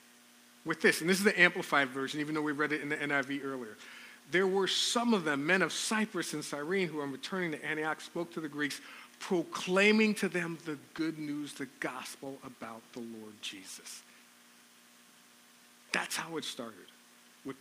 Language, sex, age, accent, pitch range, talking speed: English, male, 50-69, American, 115-180 Hz, 180 wpm